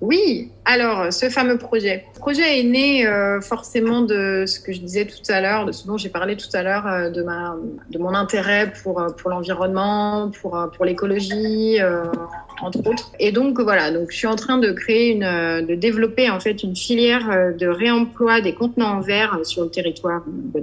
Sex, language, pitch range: female, French, 170-220 Hz